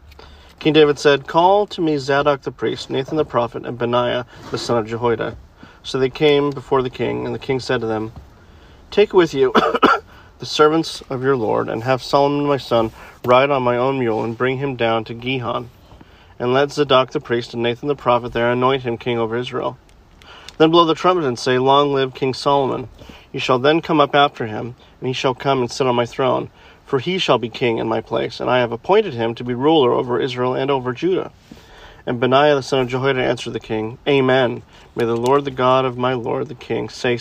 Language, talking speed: English, 220 wpm